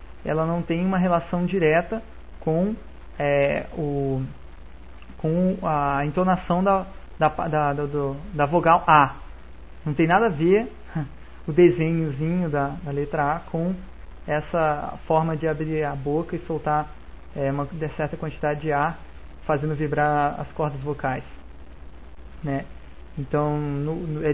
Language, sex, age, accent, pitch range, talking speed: Portuguese, male, 20-39, Brazilian, 140-170 Hz, 115 wpm